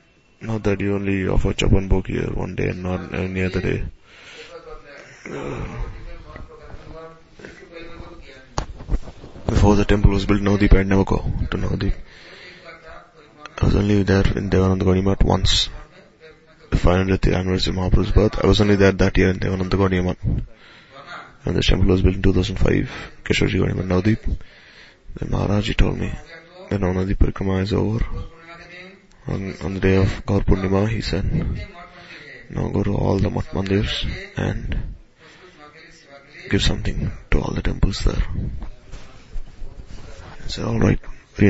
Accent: Indian